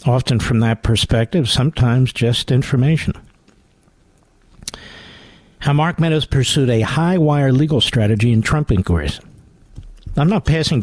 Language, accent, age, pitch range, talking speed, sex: English, American, 50-69, 105-145 Hz, 115 wpm, male